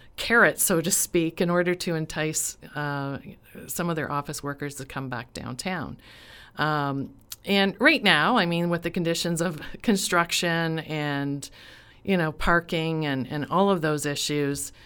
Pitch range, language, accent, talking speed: 145-175 Hz, English, American, 160 wpm